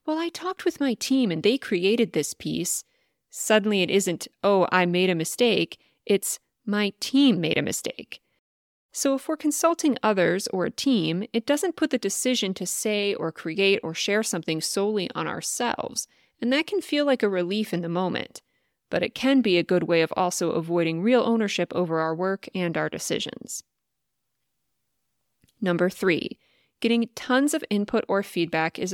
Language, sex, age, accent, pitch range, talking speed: English, female, 30-49, American, 180-245 Hz, 175 wpm